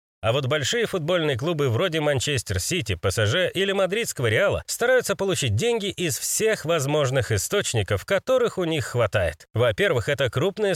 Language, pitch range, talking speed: Russian, 125-195 Hz, 145 wpm